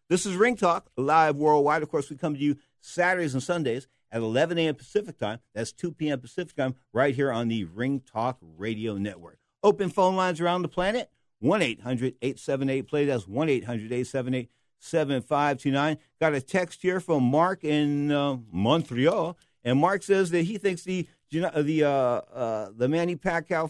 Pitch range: 120-160 Hz